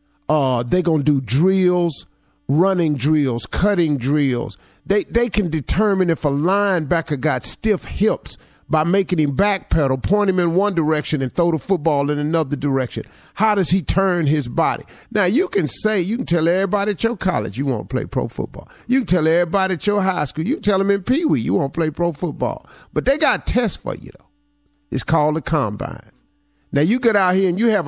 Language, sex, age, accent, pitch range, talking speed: English, male, 50-69, American, 140-195 Hz, 210 wpm